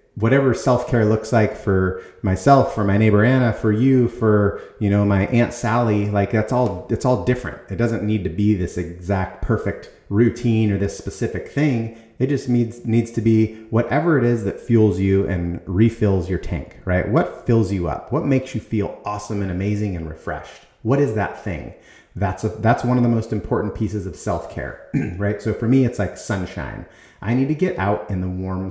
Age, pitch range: 30-49, 95-115 Hz